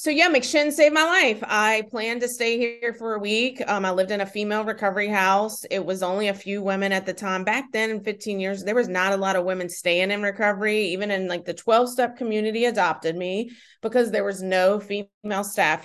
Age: 30-49